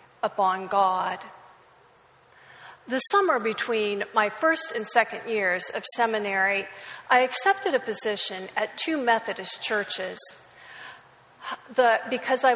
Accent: American